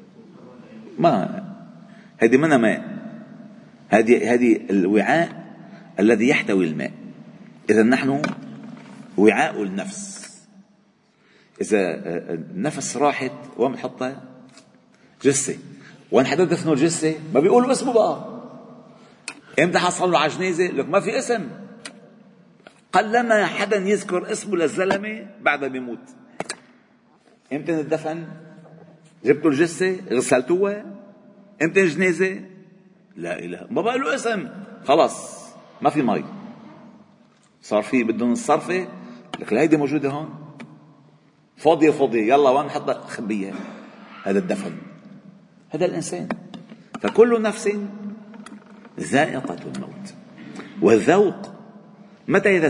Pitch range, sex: 160-215 Hz, male